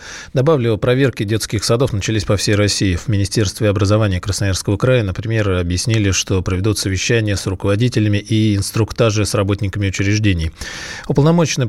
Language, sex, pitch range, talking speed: Russian, male, 95-110 Hz, 135 wpm